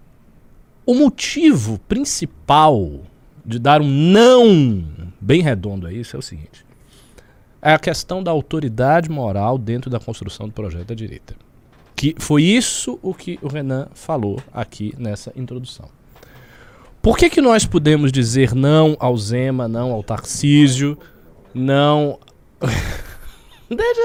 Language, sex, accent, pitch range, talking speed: Portuguese, male, Brazilian, 120-175 Hz, 130 wpm